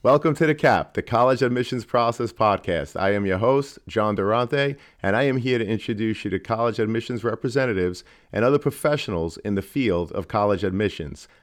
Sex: male